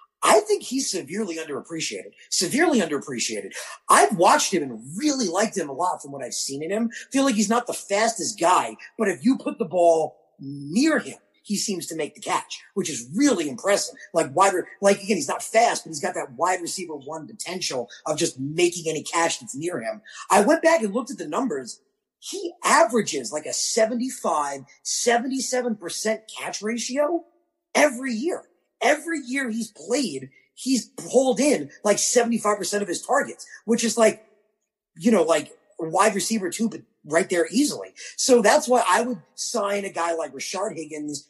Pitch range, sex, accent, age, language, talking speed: 165-240 Hz, male, American, 30-49, English, 175 wpm